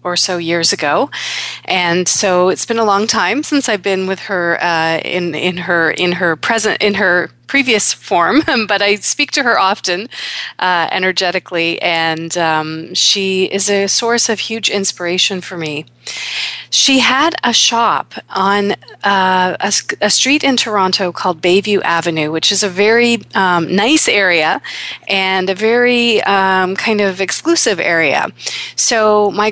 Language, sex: English, female